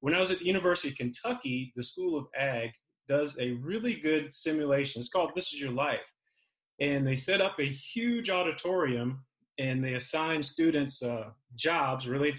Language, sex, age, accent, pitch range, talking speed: English, male, 30-49, American, 130-170 Hz, 175 wpm